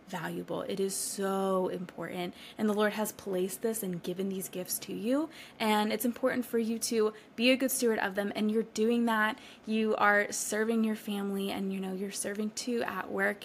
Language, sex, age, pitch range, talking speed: English, female, 20-39, 195-230 Hz, 215 wpm